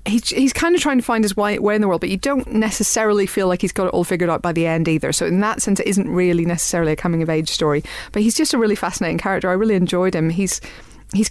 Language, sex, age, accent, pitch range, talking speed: English, female, 30-49, British, 160-200 Hz, 290 wpm